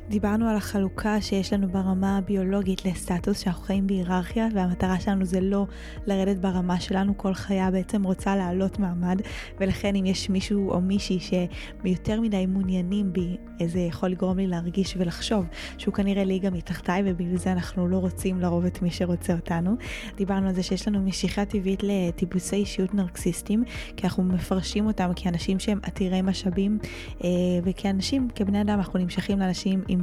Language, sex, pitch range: Hebrew, female, 185-200 Hz